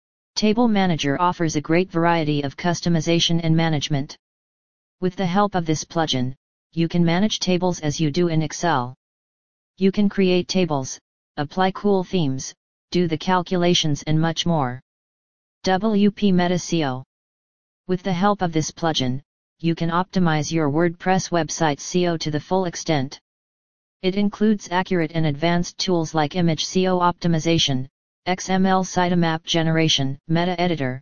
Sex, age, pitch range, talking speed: female, 40-59, 155-180 Hz, 140 wpm